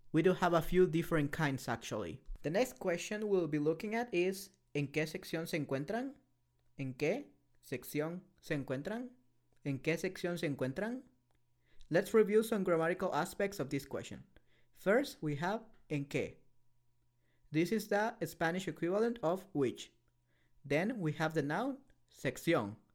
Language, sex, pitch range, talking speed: English, male, 135-185 Hz, 150 wpm